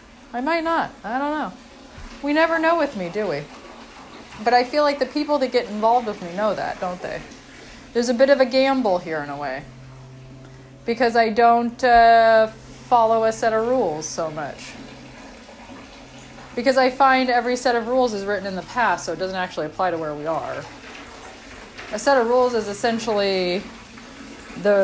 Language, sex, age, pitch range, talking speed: English, female, 30-49, 185-255 Hz, 185 wpm